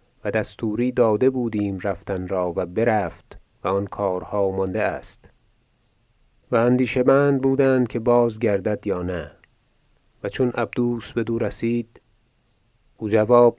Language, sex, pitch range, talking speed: Persian, male, 100-120 Hz, 135 wpm